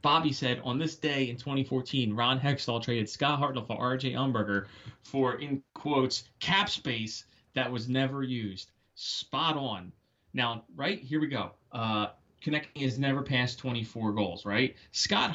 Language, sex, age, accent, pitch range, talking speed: English, male, 30-49, American, 125-160 Hz, 155 wpm